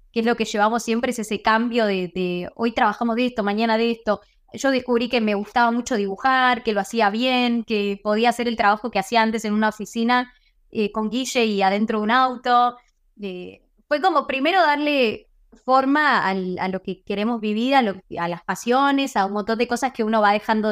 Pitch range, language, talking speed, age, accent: 205-260 Hz, Spanish, 210 wpm, 20-39, Argentinian